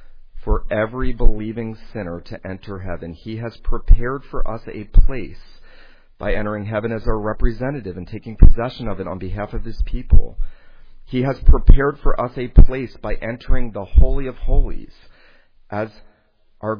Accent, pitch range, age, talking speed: American, 95-120 Hz, 40-59, 160 wpm